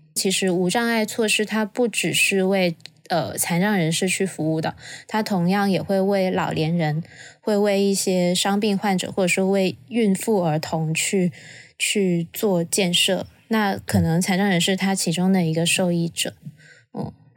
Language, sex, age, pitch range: Chinese, female, 20-39, 175-205 Hz